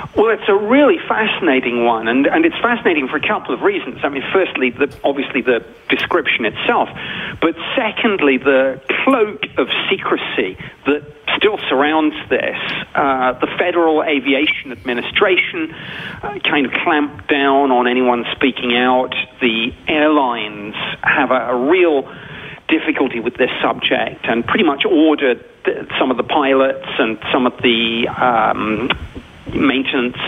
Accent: British